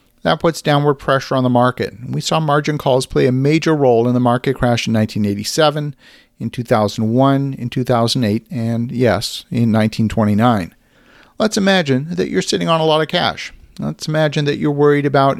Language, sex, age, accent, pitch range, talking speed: English, male, 40-59, American, 125-155 Hz, 175 wpm